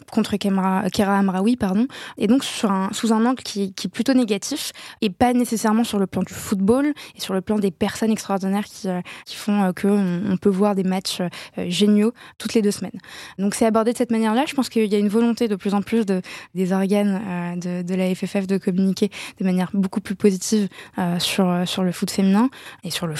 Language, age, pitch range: French, 20-39, 185-220 Hz